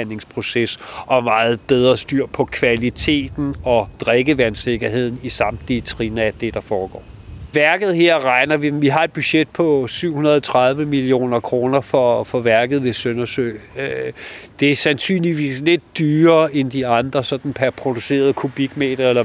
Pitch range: 120-140 Hz